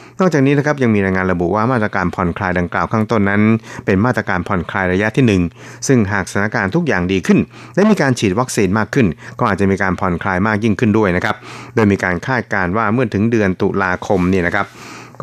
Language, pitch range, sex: Thai, 95-125 Hz, male